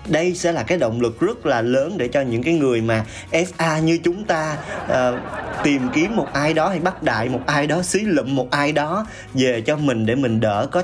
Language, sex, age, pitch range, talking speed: Vietnamese, male, 20-39, 120-165 Hz, 235 wpm